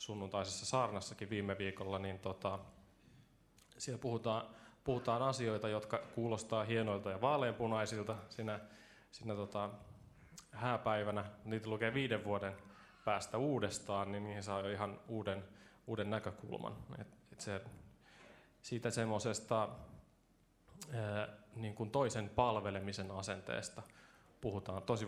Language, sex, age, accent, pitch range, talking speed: Finnish, male, 20-39, native, 100-115 Hz, 100 wpm